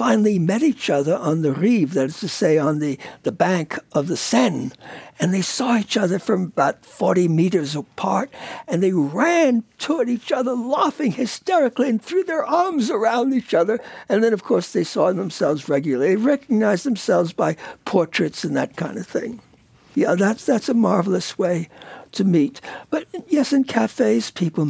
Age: 60-79